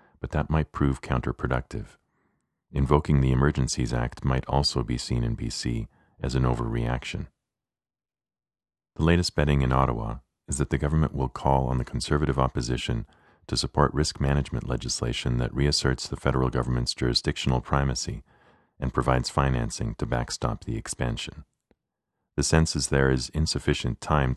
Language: English